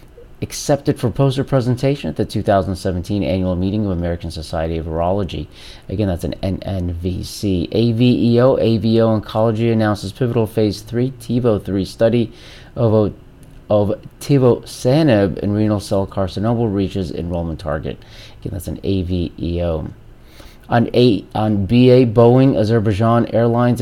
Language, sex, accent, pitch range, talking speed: English, male, American, 90-120 Hz, 130 wpm